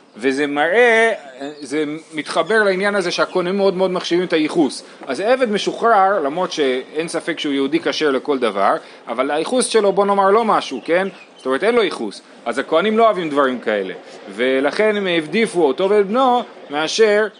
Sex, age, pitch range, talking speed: male, 30-49, 140-200 Hz, 170 wpm